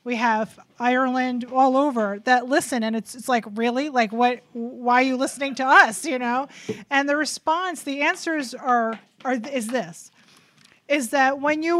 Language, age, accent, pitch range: English, 30-49, American, 225-260 Hz